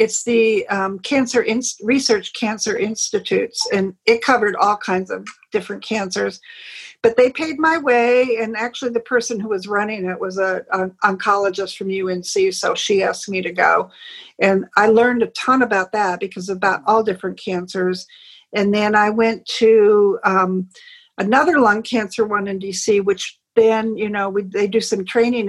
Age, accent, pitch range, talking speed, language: 50-69, American, 195-235 Hz, 170 wpm, English